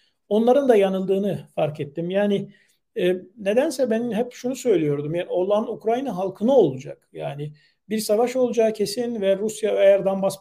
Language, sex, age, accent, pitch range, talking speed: Turkish, male, 50-69, native, 190-235 Hz, 150 wpm